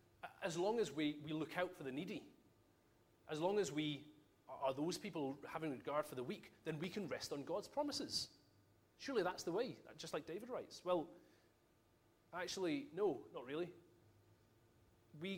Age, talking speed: 30-49, 170 wpm